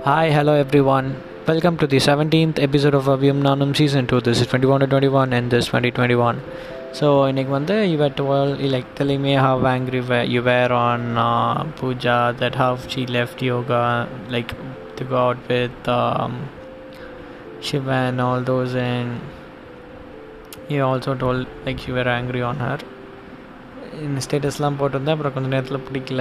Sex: male